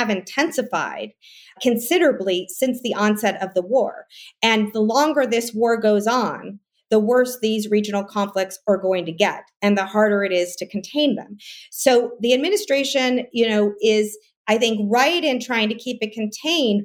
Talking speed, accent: 170 wpm, American